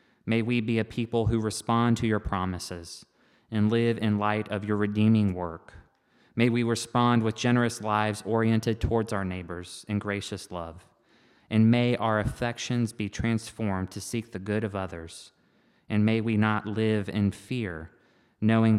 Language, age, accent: English, 20-39, American